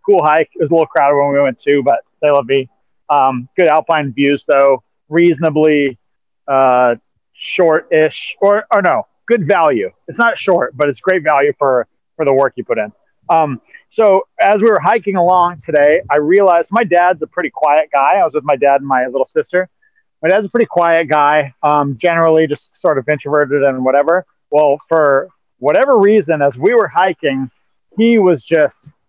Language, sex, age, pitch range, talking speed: English, male, 30-49, 145-190 Hz, 190 wpm